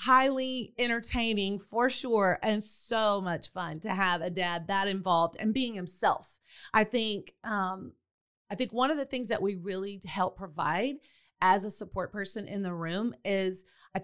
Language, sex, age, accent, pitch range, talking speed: English, female, 30-49, American, 185-225 Hz, 170 wpm